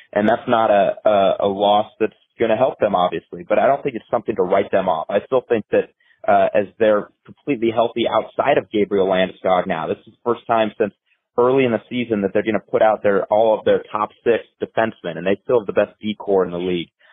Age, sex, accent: 30-49, male, American